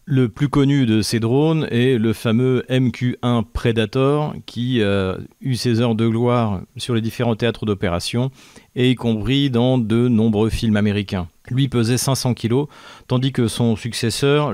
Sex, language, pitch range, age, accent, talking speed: male, French, 115-135 Hz, 40-59, French, 160 wpm